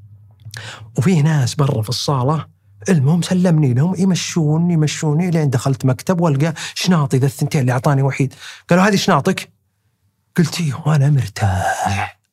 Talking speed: 130 wpm